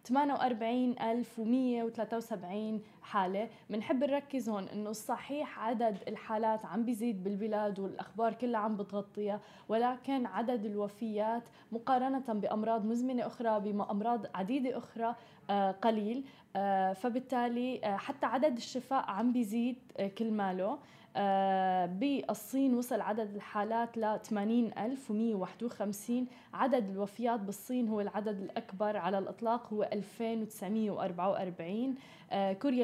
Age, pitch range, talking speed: 20-39, 205-240 Hz, 100 wpm